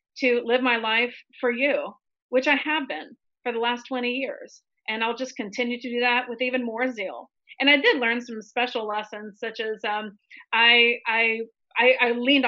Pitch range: 210-250 Hz